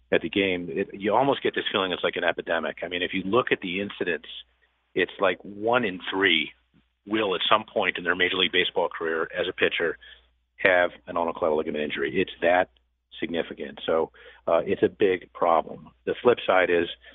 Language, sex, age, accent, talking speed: English, male, 40-59, American, 195 wpm